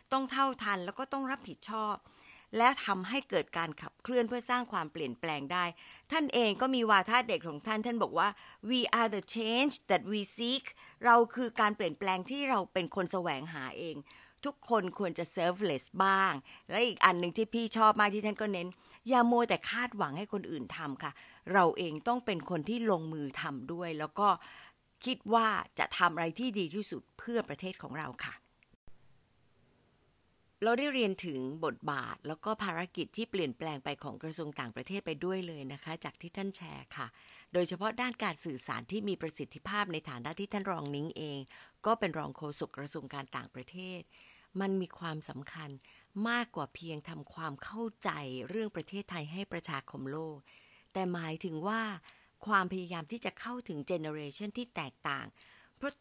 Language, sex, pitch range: Thai, female, 160-225 Hz